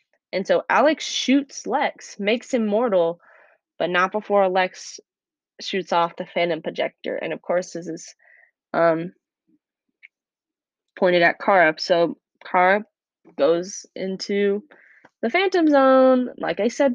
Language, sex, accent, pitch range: English, female, American, 180-245 Hz